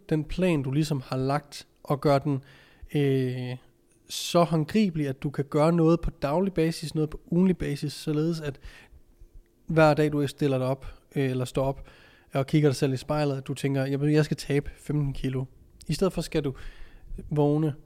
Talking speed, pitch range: 180 wpm, 135-160 Hz